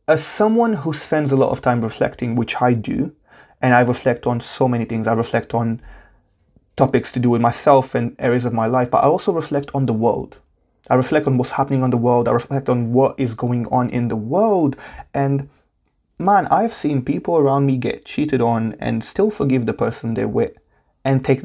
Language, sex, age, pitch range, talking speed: English, male, 20-39, 120-155 Hz, 215 wpm